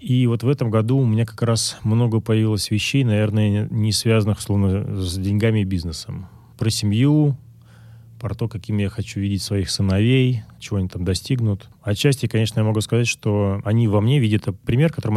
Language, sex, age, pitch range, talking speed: Russian, male, 30-49, 95-115 Hz, 180 wpm